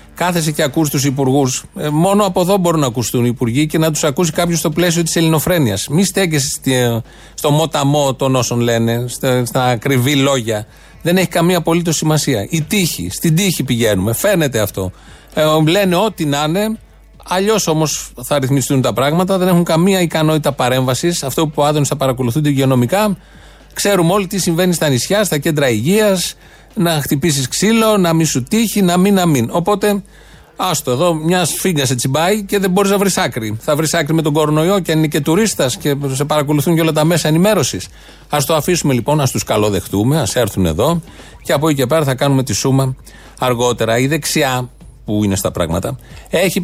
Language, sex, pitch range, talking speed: Greek, male, 130-175 Hz, 190 wpm